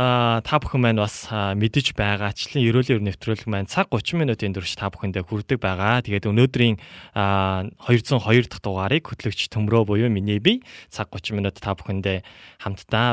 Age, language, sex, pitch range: 20-39, Korean, male, 100-125 Hz